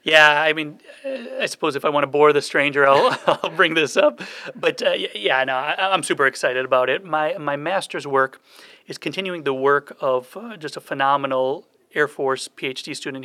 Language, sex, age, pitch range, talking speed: English, male, 30-49, 135-160 Hz, 190 wpm